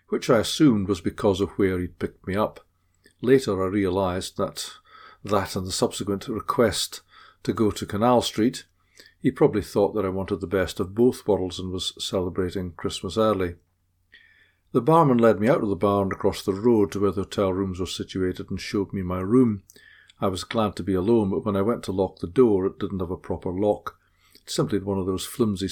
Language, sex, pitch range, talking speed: English, male, 95-105 Hz, 210 wpm